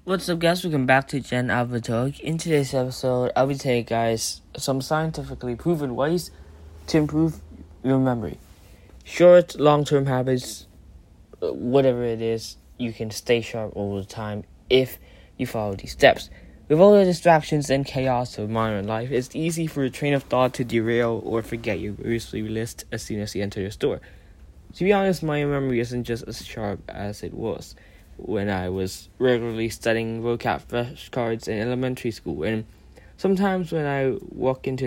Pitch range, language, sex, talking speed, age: 105-135 Hz, English, male, 170 wpm, 10-29